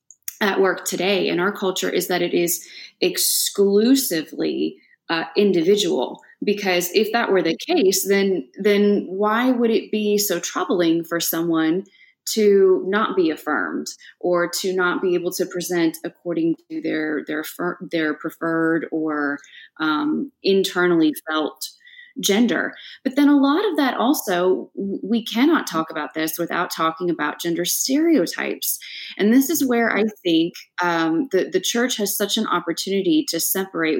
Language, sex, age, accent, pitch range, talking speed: English, female, 20-39, American, 170-230 Hz, 150 wpm